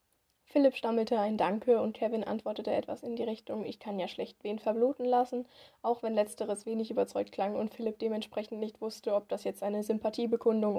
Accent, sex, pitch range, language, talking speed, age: German, female, 215-245 Hz, German, 190 wpm, 10-29